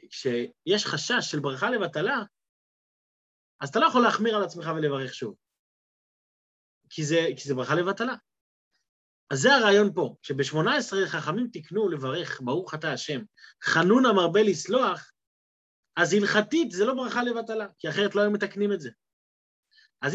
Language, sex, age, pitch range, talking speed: Hebrew, male, 30-49, 140-205 Hz, 145 wpm